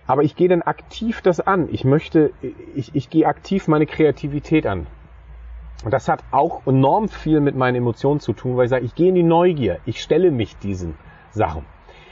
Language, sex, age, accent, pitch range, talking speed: German, male, 40-59, German, 115-150 Hz, 200 wpm